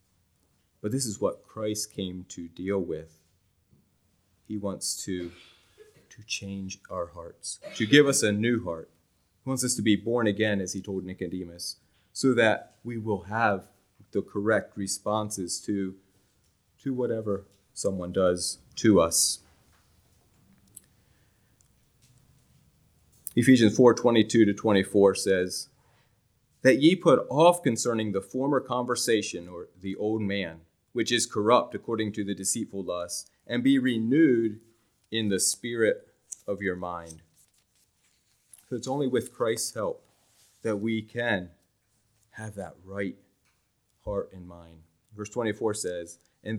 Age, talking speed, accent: 30-49, 135 wpm, American